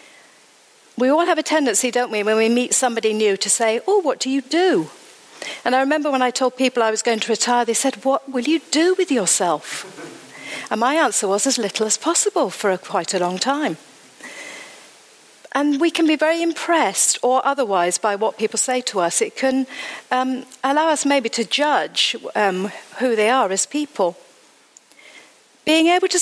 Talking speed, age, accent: 190 wpm, 50-69, British